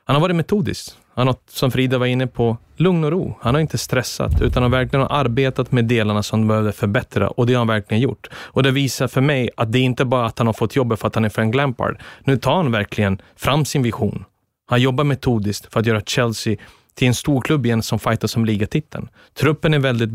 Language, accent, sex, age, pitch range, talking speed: Swedish, native, male, 30-49, 115-145 Hz, 250 wpm